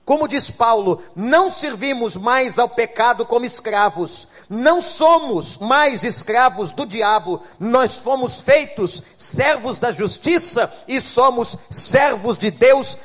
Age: 50-69